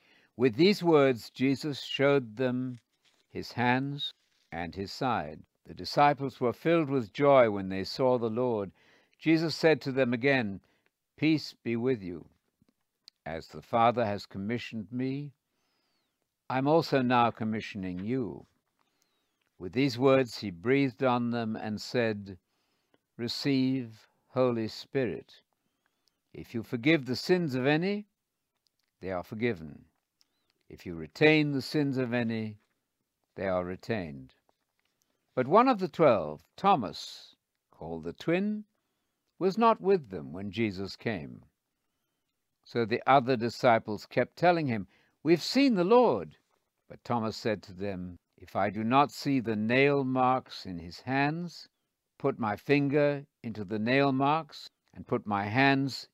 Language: English